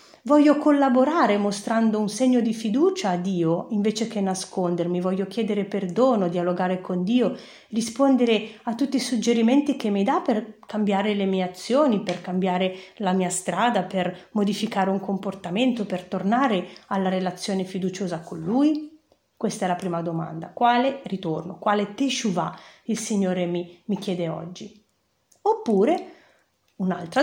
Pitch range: 180-245 Hz